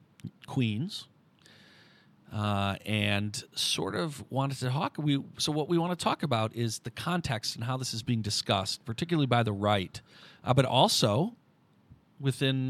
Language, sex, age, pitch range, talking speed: English, male, 40-59, 105-135 Hz, 155 wpm